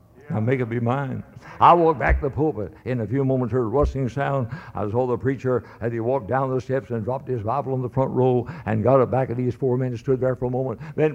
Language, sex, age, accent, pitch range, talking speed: English, male, 60-79, American, 125-140 Hz, 280 wpm